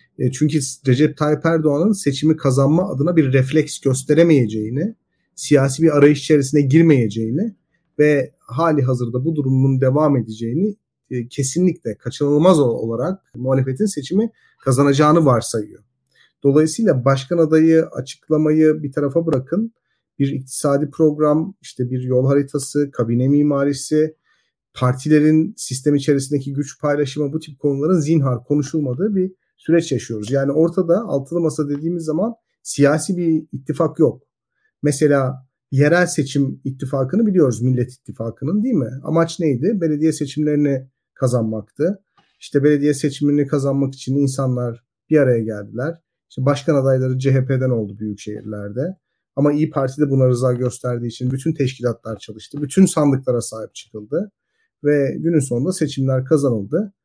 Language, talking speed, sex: Turkish, 125 wpm, male